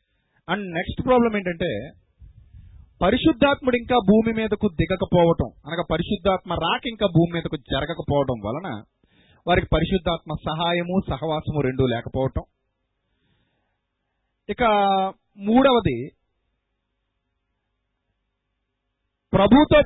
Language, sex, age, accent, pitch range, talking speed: Telugu, male, 30-49, native, 125-200 Hz, 80 wpm